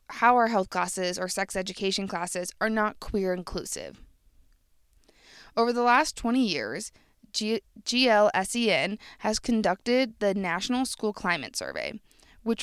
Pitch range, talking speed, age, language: 190-235 Hz, 130 wpm, 20-39, English